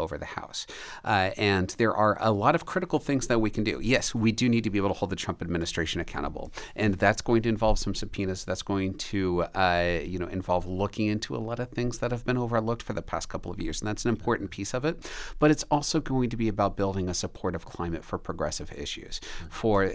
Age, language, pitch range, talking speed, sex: 40-59, English, 95-115 Hz, 245 wpm, male